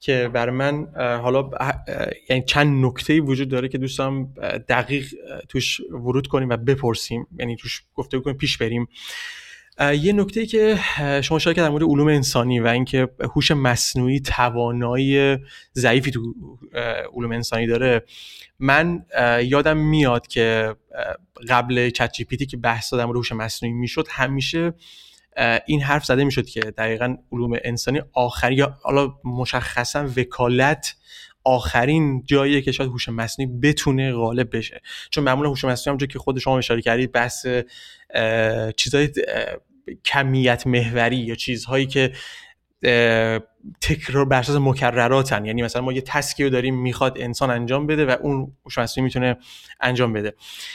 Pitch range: 120-140 Hz